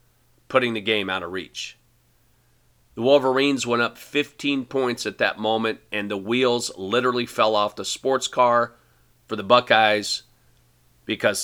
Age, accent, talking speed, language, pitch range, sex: 40-59, American, 145 wpm, English, 105-130 Hz, male